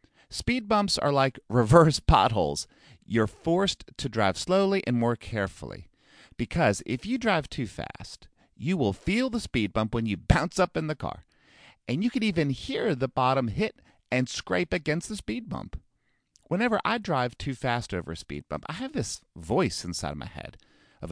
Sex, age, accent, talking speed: male, 40-59, American, 180 wpm